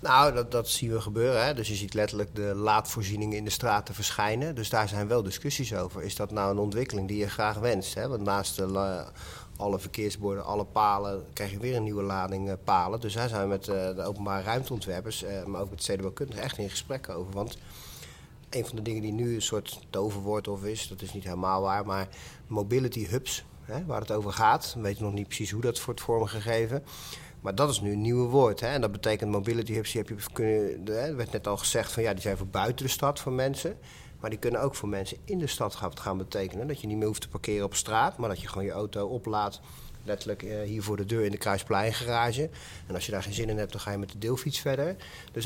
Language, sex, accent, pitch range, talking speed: Dutch, male, Dutch, 100-130 Hz, 230 wpm